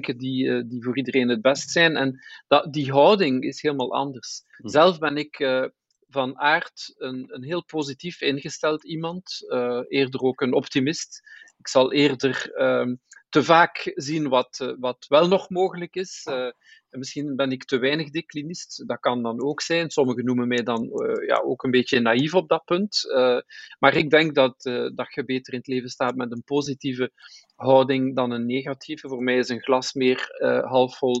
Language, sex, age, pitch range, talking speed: Dutch, male, 40-59, 125-155 Hz, 185 wpm